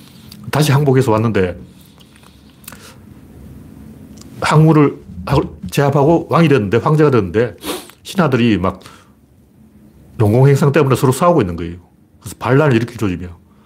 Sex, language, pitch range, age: male, Korean, 100-145 Hz, 40-59